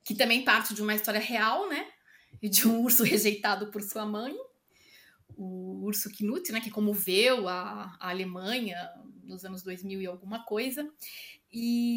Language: Portuguese